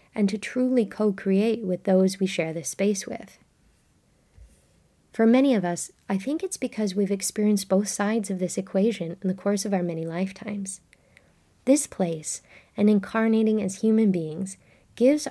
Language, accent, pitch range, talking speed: English, American, 185-220 Hz, 160 wpm